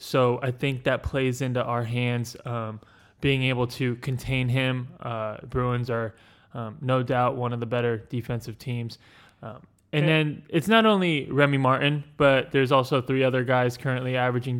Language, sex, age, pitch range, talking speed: English, male, 20-39, 120-135 Hz, 175 wpm